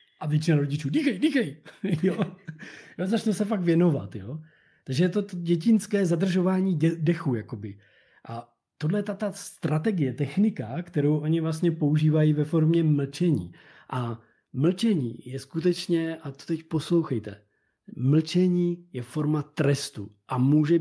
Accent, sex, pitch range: native, male, 130-170 Hz